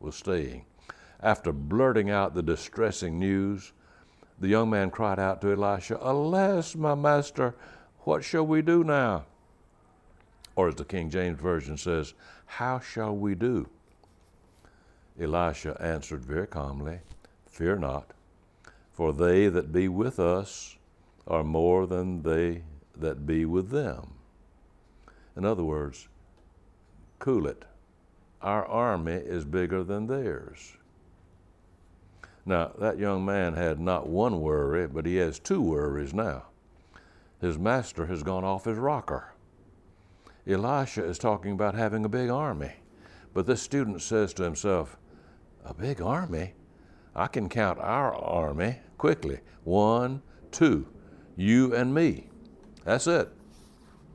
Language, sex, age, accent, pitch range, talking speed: English, male, 60-79, American, 85-105 Hz, 130 wpm